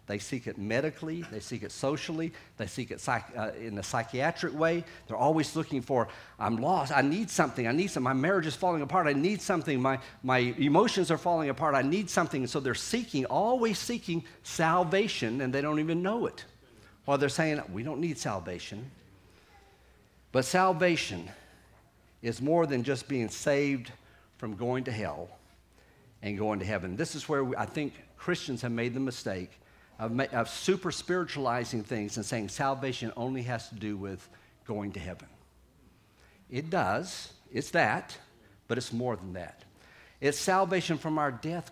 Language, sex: English, male